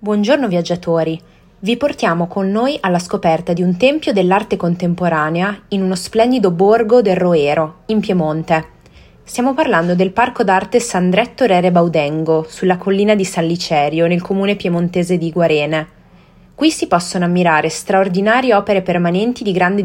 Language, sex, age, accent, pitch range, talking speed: Italian, female, 20-39, native, 170-220 Hz, 145 wpm